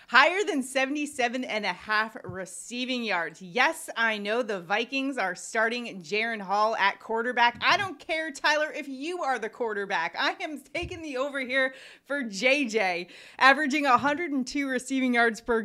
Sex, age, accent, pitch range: female, 30-49, American, 200-275 Hz